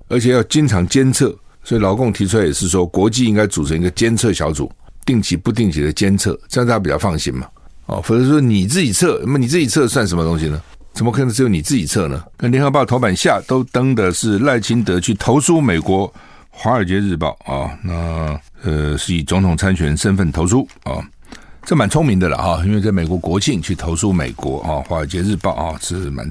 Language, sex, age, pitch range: Chinese, male, 60-79, 80-110 Hz